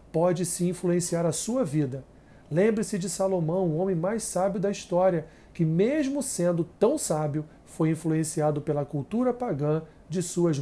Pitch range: 150-185 Hz